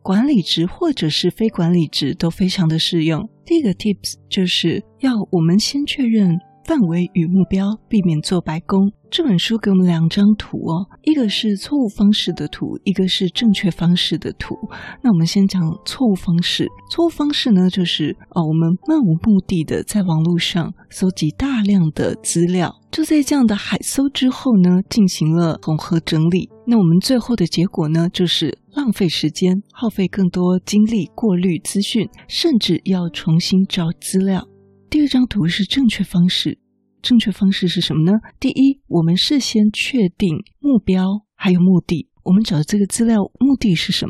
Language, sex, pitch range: Chinese, female, 170-215 Hz